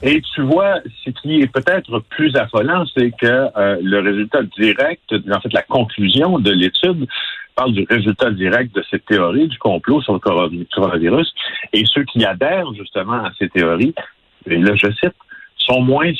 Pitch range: 105-140 Hz